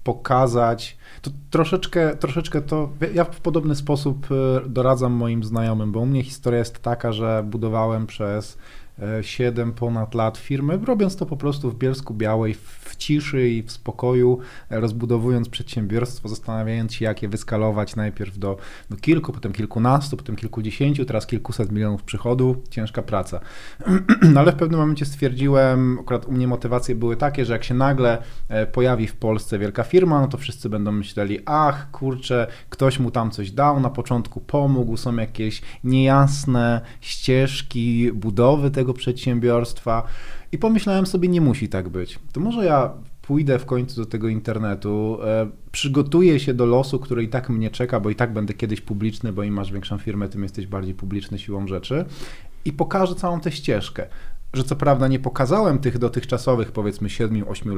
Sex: male